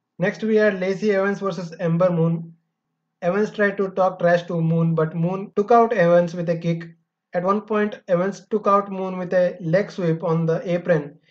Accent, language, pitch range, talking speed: Indian, English, 170-200 Hz, 195 wpm